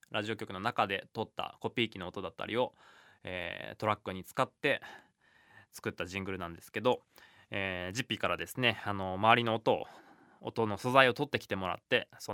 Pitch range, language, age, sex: 100-145 Hz, Japanese, 20-39, male